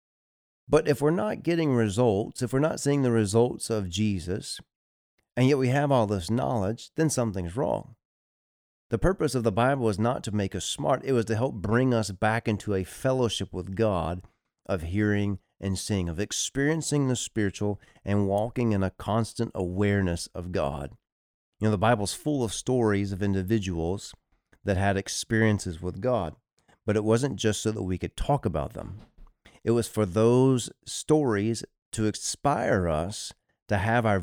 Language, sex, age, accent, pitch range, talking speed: English, male, 40-59, American, 100-125 Hz, 175 wpm